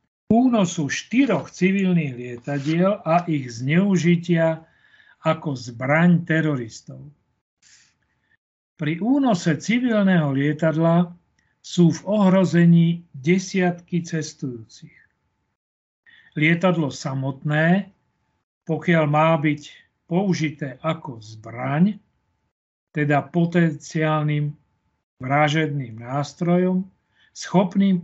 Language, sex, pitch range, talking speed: Slovak, male, 145-185 Hz, 70 wpm